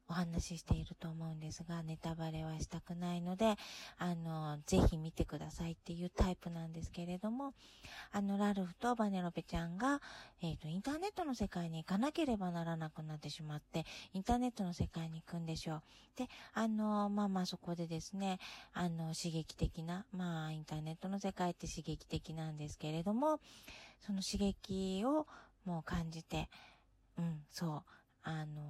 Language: Japanese